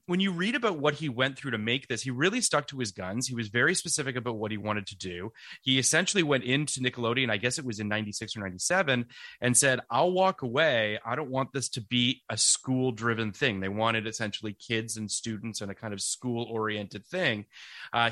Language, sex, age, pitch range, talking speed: English, male, 30-49, 110-140 Hz, 220 wpm